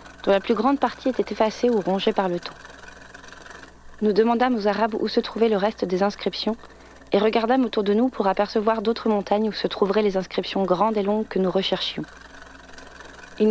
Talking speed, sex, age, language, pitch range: 195 wpm, female, 40-59, French, 190-225 Hz